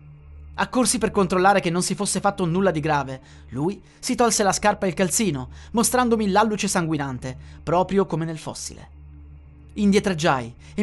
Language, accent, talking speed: Italian, native, 155 wpm